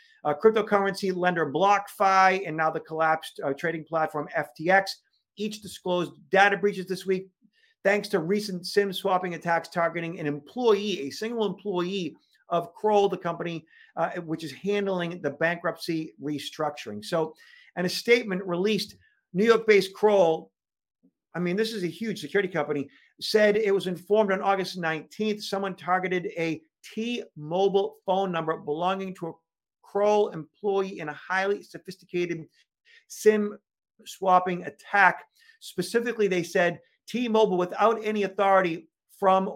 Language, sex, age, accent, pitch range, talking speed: English, male, 50-69, American, 170-205 Hz, 135 wpm